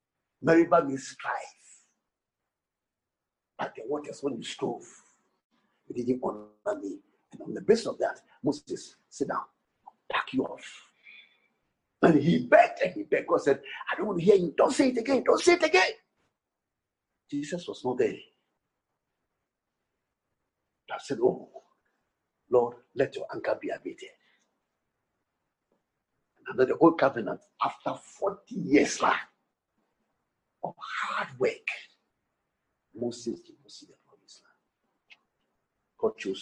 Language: English